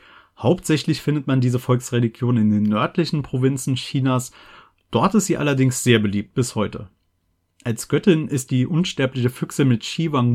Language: German